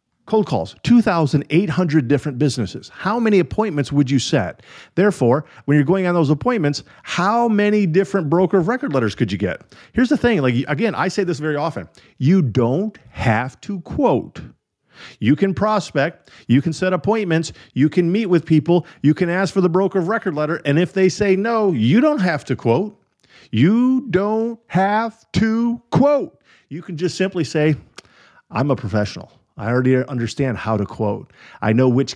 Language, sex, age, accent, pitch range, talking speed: English, male, 50-69, American, 120-180 Hz, 180 wpm